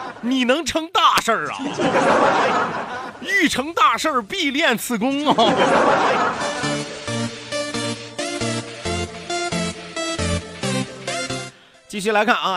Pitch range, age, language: 160-260 Hz, 30-49, Chinese